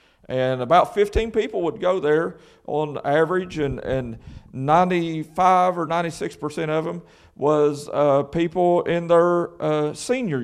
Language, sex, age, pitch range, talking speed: English, male, 40-59, 115-165 Hz, 140 wpm